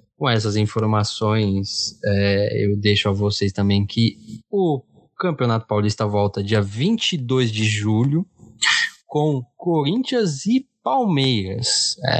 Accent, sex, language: Brazilian, male, Portuguese